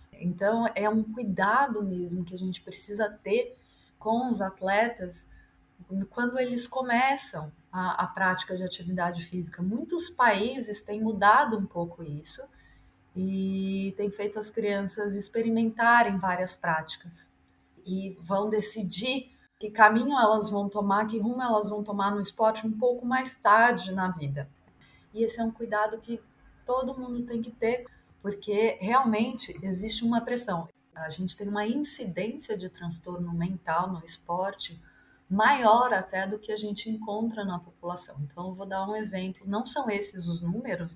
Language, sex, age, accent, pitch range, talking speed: Portuguese, female, 20-39, Brazilian, 180-225 Hz, 150 wpm